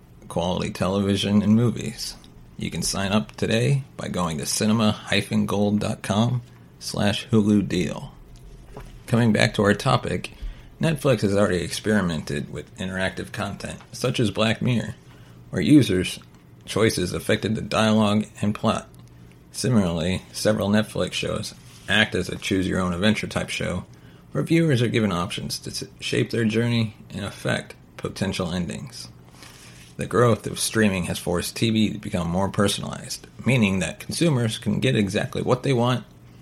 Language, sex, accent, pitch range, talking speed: English, male, American, 90-115 Hz, 135 wpm